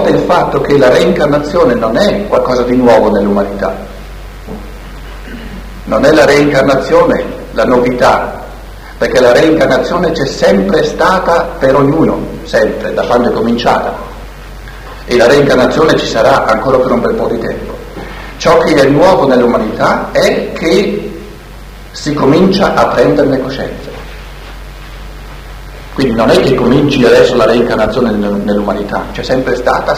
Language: Italian